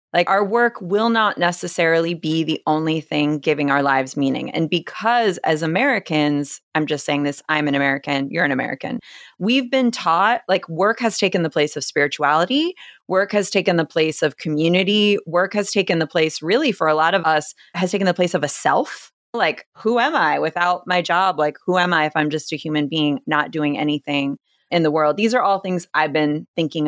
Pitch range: 155-190 Hz